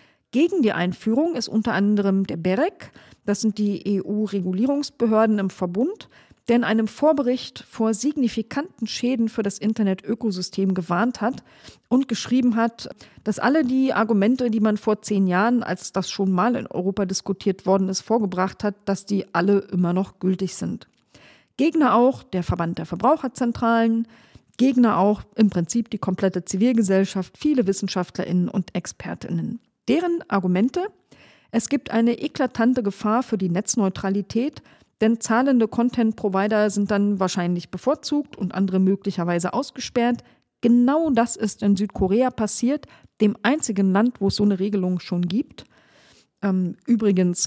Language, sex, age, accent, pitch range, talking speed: German, female, 40-59, German, 190-235 Hz, 140 wpm